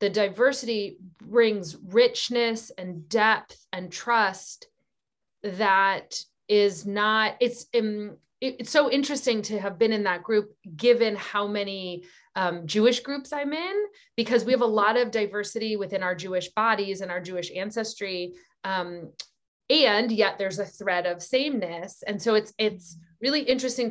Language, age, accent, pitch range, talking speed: English, 30-49, American, 190-245 Hz, 145 wpm